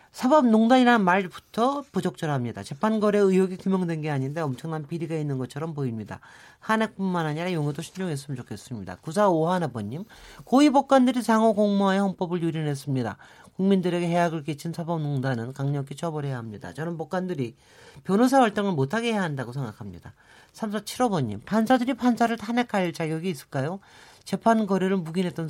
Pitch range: 140-205 Hz